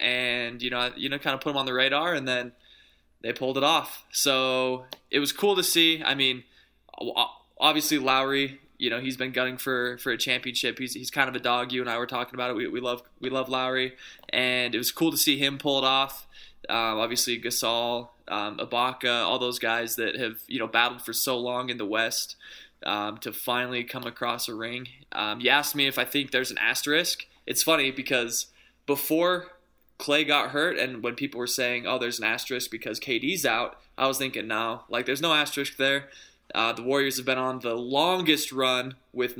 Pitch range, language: 120-135 Hz, English